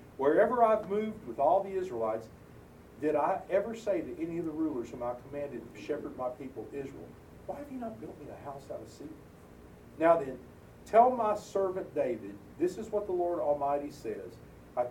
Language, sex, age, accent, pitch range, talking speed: English, male, 40-59, American, 120-180 Hz, 195 wpm